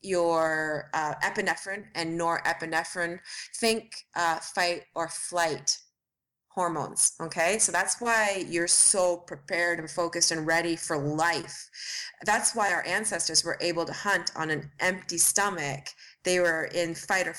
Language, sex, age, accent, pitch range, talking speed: English, female, 30-49, American, 165-205 Hz, 140 wpm